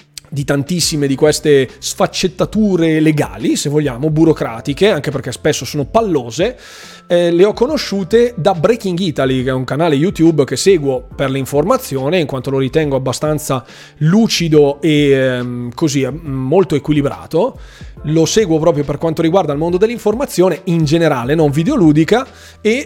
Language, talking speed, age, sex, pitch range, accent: Italian, 145 wpm, 20-39, male, 140-185 Hz, native